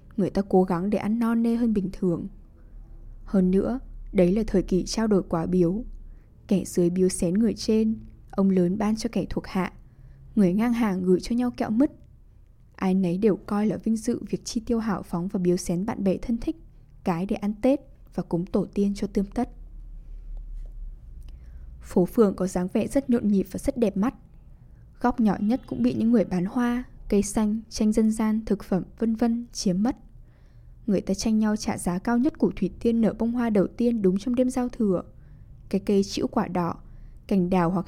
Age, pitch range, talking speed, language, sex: 10-29, 185-230 Hz, 210 wpm, English, female